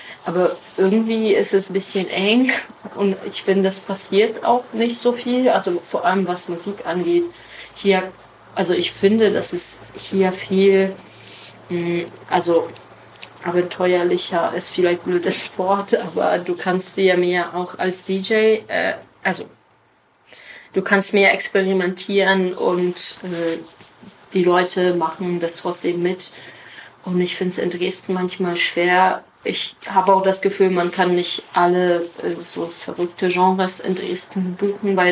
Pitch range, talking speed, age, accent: 180-195 Hz, 135 wpm, 30-49, German